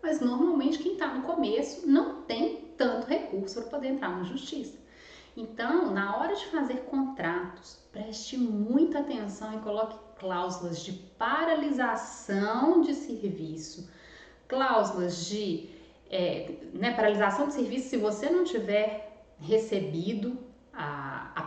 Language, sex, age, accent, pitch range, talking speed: Portuguese, female, 30-49, Brazilian, 195-270 Hz, 125 wpm